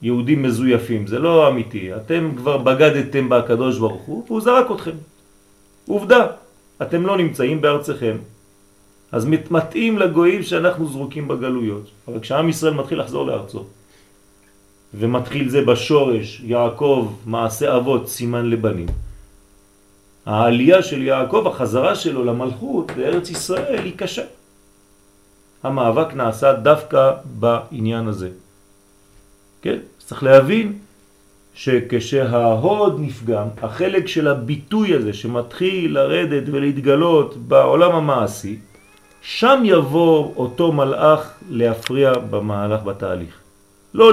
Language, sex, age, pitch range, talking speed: French, male, 40-59, 100-155 Hz, 80 wpm